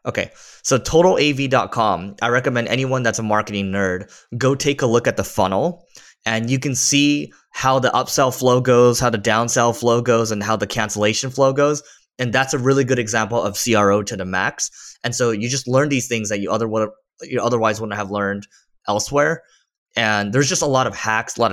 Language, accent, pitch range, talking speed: English, American, 105-125 Hz, 205 wpm